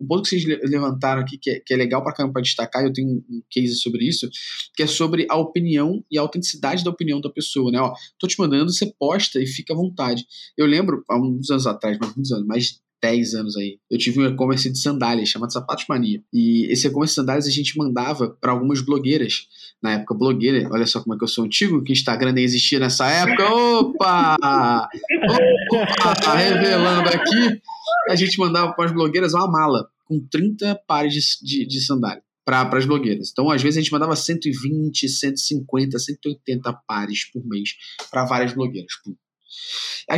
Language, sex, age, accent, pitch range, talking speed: Portuguese, male, 20-39, Brazilian, 125-165 Hz, 195 wpm